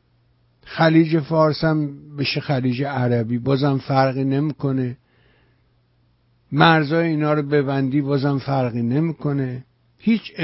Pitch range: 115-160 Hz